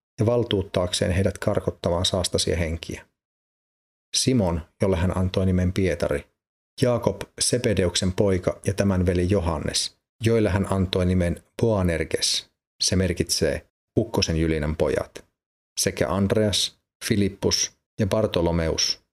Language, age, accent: Finnish, 30-49, native